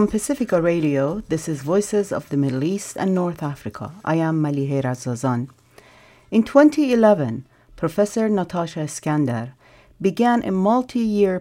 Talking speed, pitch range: 130 wpm, 145-200 Hz